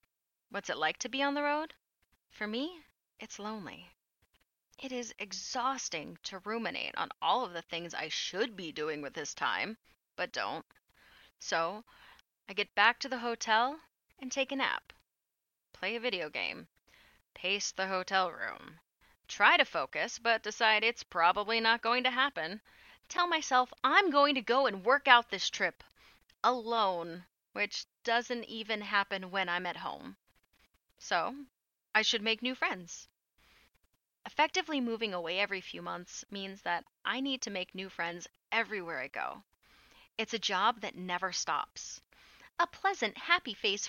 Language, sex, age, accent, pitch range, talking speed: English, female, 30-49, American, 200-270 Hz, 155 wpm